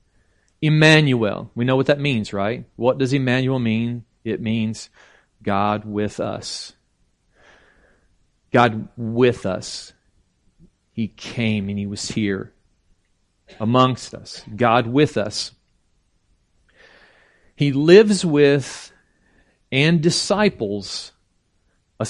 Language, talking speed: English, 100 wpm